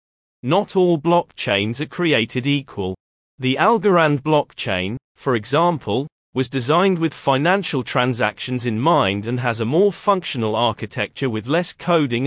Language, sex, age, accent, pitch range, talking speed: English, male, 30-49, British, 115-160 Hz, 130 wpm